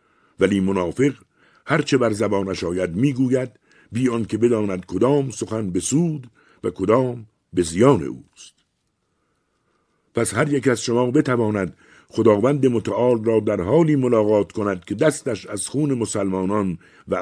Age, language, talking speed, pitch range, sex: 60-79, Persian, 130 wpm, 95-125 Hz, male